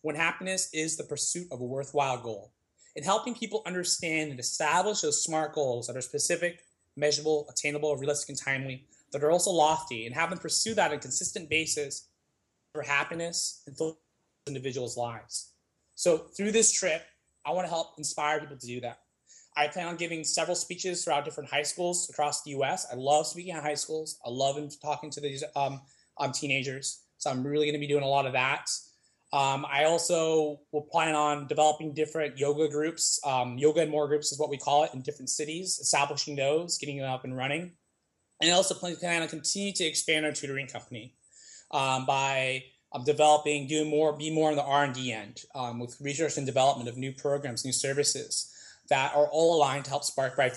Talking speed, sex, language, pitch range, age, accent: 195 wpm, male, English, 135-160 Hz, 20-39, American